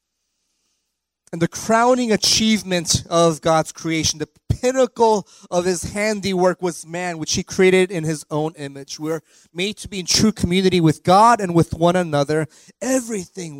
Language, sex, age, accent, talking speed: English, male, 30-49, American, 155 wpm